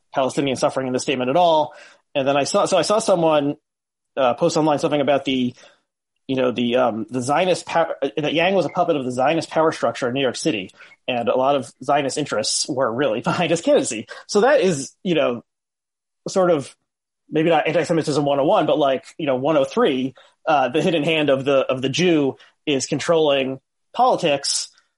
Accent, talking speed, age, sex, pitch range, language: American, 195 wpm, 30-49, male, 130-165 Hz, English